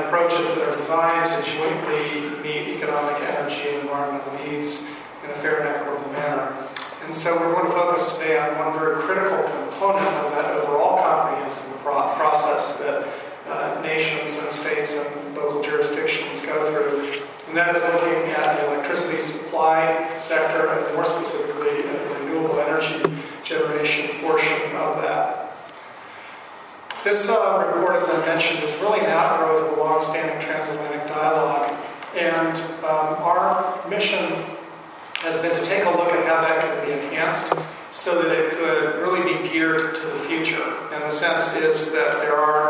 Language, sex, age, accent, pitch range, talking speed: English, male, 40-59, American, 150-165 Hz, 155 wpm